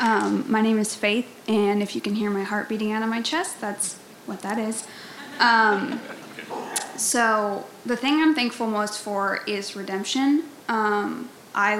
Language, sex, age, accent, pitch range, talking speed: English, female, 20-39, American, 205-230 Hz, 170 wpm